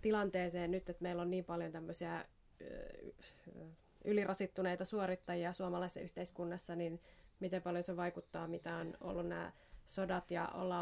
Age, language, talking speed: 20-39, Finnish, 130 wpm